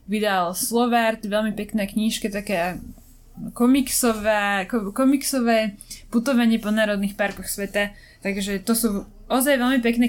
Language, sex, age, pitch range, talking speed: Slovak, female, 20-39, 210-240 Hz, 105 wpm